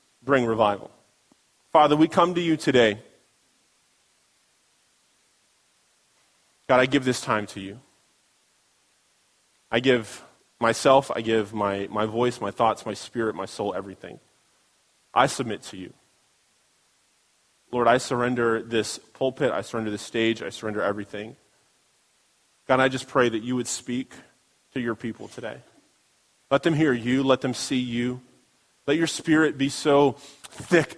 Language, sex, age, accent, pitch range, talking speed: English, male, 30-49, American, 115-140 Hz, 140 wpm